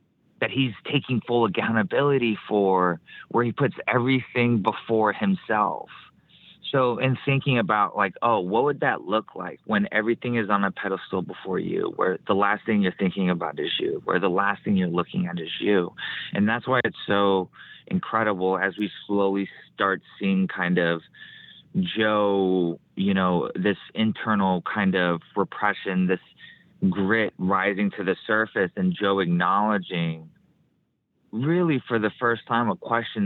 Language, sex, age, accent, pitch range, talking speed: English, male, 30-49, American, 95-120 Hz, 155 wpm